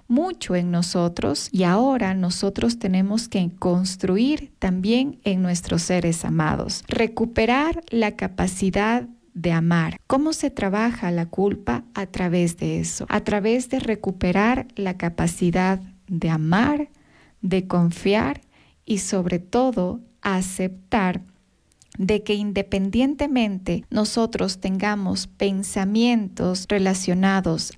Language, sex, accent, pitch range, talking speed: Spanish, female, Mexican, 185-235 Hz, 105 wpm